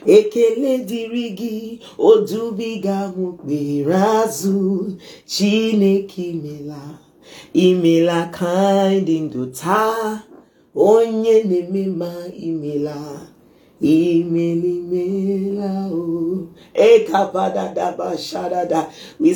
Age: 30-49